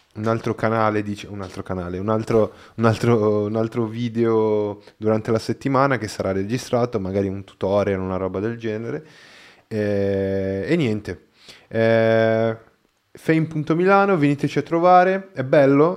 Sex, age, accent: male, 20-39, native